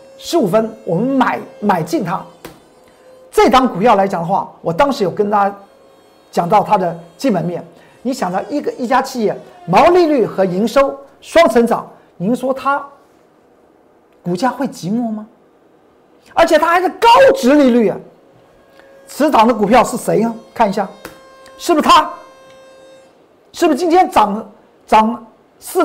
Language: Chinese